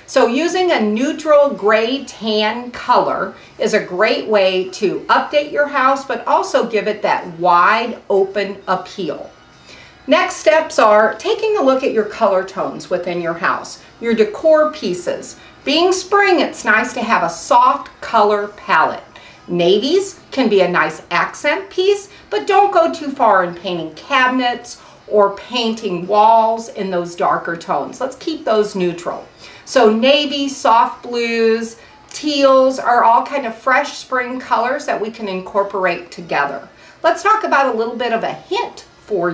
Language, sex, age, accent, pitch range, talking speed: English, female, 50-69, American, 200-290 Hz, 155 wpm